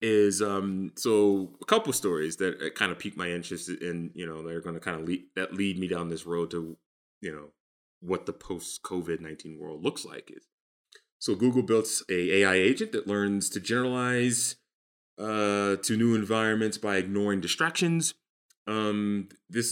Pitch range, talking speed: 85-110 Hz, 185 wpm